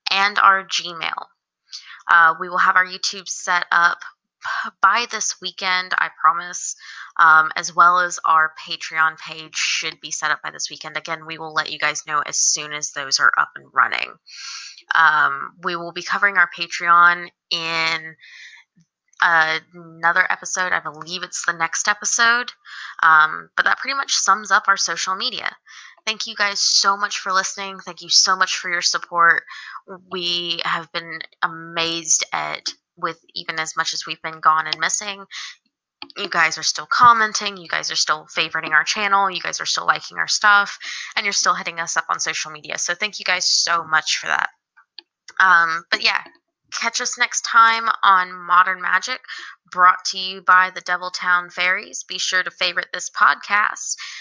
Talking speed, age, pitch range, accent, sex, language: 175 wpm, 20-39, 165-195 Hz, American, female, English